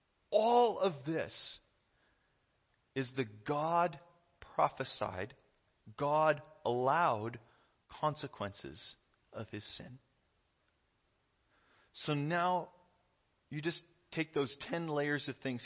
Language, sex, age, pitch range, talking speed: English, male, 30-49, 115-155 Hz, 90 wpm